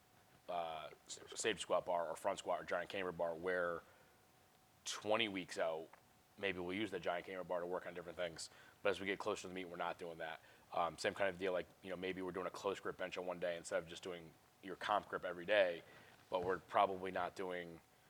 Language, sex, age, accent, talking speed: English, male, 30-49, American, 235 wpm